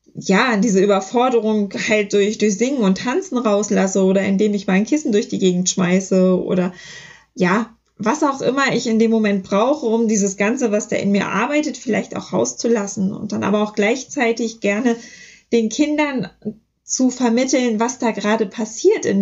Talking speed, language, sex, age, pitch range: 170 wpm, German, female, 20-39, 195-230 Hz